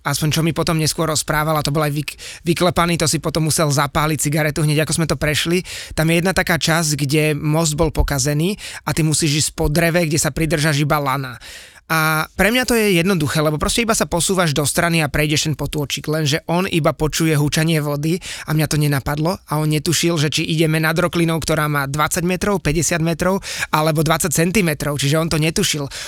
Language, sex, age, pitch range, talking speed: Slovak, male, 20-39, 150-170 Hz, 210 wpm